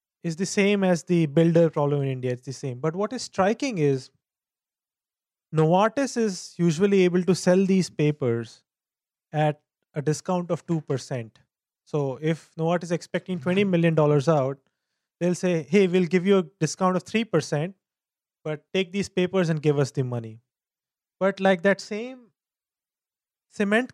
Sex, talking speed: male, 155 wpm